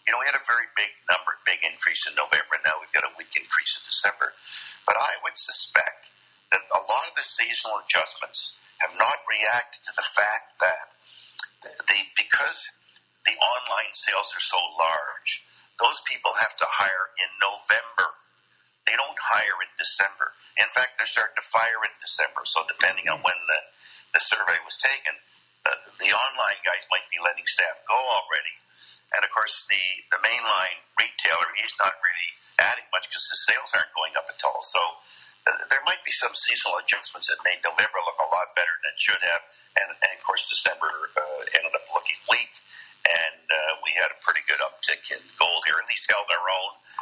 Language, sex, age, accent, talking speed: English, male, 50-69, American, 190 wpm